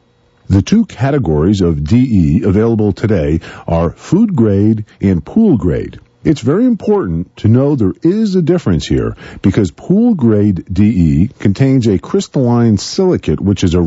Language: English